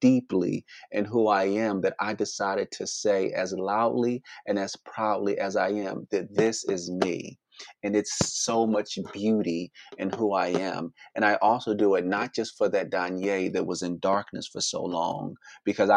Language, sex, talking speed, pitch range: English, male, 185 wpm, 95-105 Hz